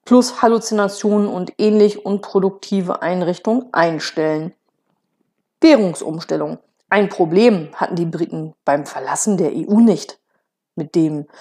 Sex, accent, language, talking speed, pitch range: female, German, German, 105 wpm, 180-220 Hz